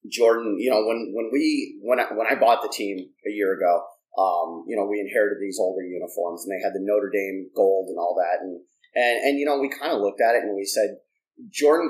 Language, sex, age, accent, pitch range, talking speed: English, male, 30-49, American, 100-155 Hz, 245 wpm